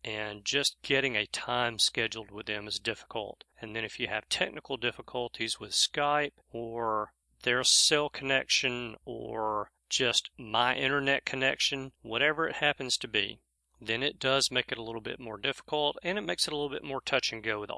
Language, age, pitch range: English, 40-59, 115-150 Hz